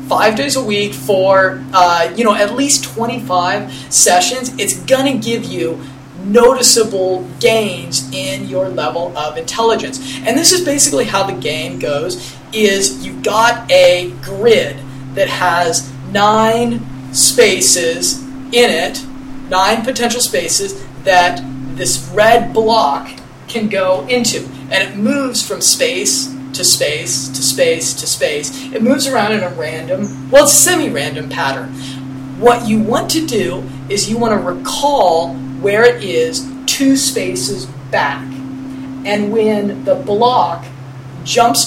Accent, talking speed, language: American, 135 wpm, English